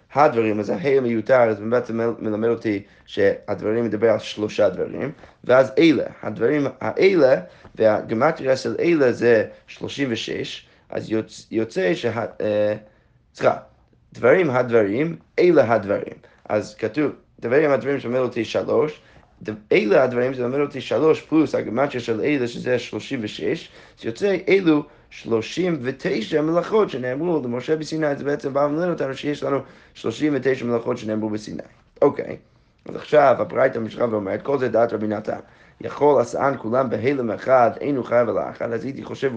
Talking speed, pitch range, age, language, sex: 150 wpm, 115-150 Hz, 30-49, Hebrew, male